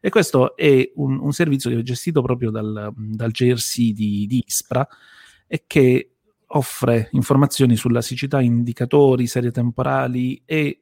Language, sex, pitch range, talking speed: Italian, male, 115-140 Hz, 140 wpm